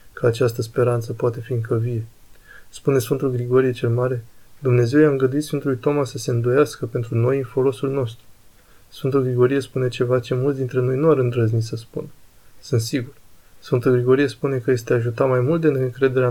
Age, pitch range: 20-39, 115-135 Hz